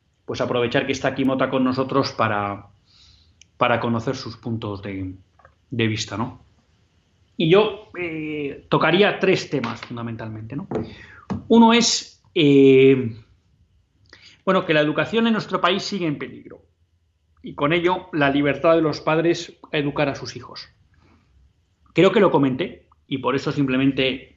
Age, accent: 30-49, Spanish